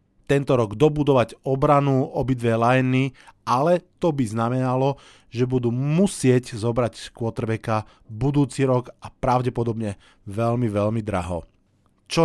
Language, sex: Slovak, male